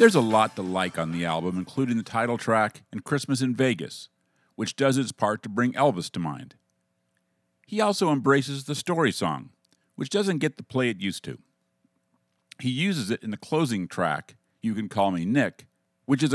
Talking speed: 195 wpm